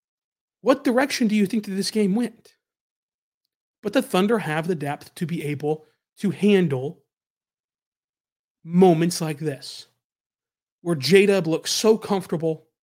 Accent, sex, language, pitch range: American, male, English, 155-215 Hz